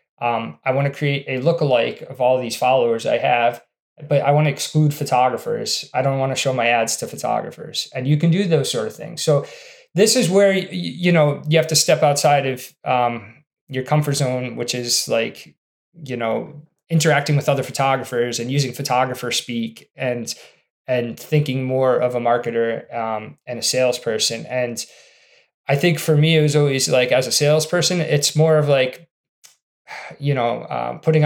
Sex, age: male, 20-39